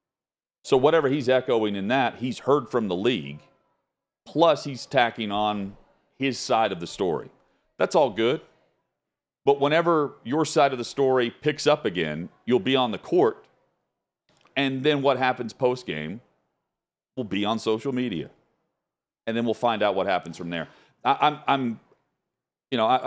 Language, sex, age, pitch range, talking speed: English, male, 40-59, 105-135 Hz, 165 wpm